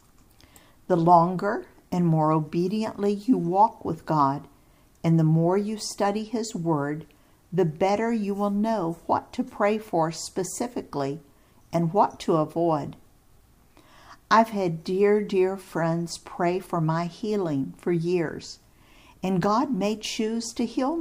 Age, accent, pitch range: 50-69, American, 155-215 Hz